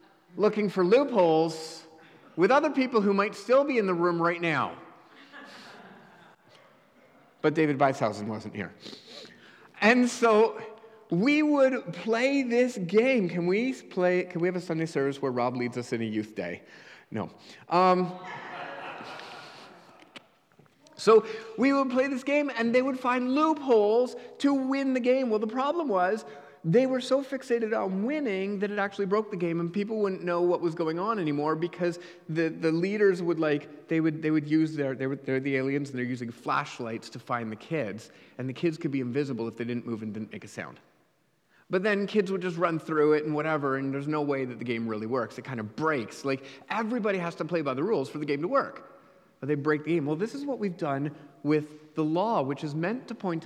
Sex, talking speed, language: male, 200 wpm, English